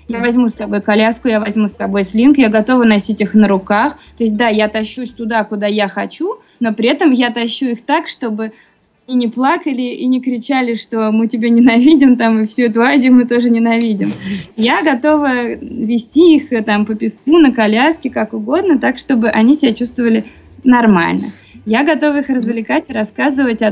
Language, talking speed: Russian, 190 wpm